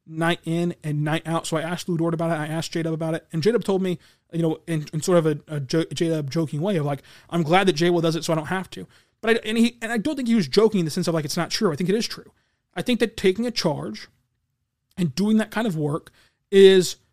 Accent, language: American, English